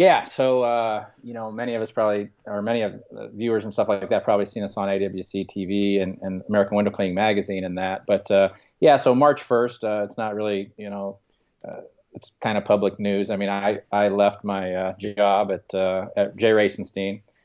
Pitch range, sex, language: 100-115 Hz, male, English